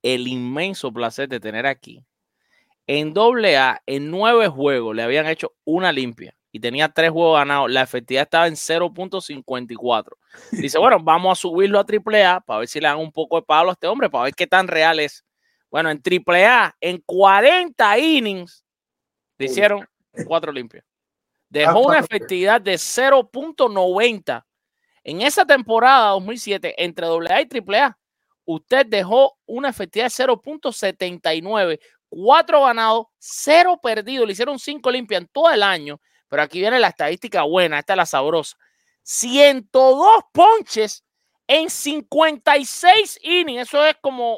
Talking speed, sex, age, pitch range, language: 150 wpm, male, 30-49, 165-275 Hz, English